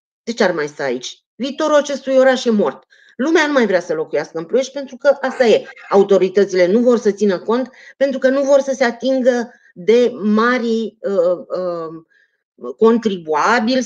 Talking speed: 170 wpm